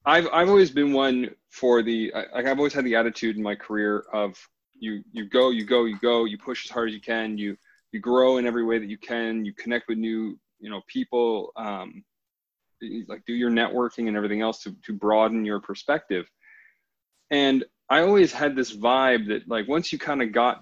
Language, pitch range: English, 110-140 Hz